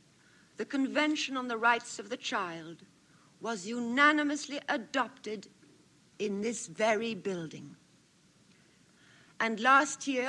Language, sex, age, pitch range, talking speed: English, female, 60-79, 200-270 Hz, 105 wpm